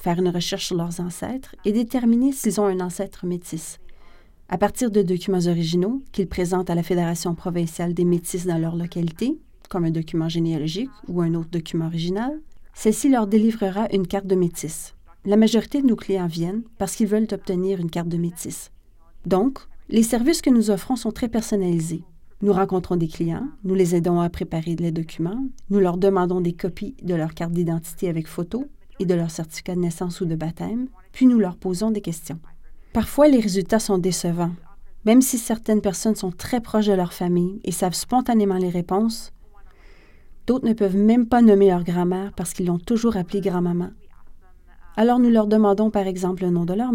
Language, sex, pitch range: French, female, 175-220 Hz